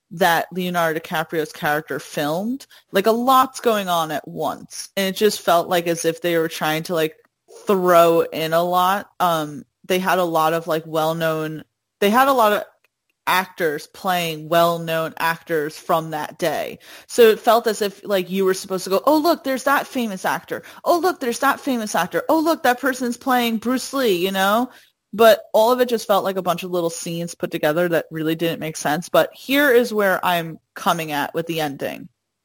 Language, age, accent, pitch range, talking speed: English, 30-49, American, 160-210 Hz, 205 wpm